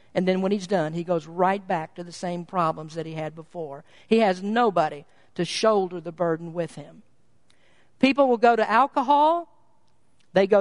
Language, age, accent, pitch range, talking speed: English, 50-69, American, 175-235 Hz, 185 wpm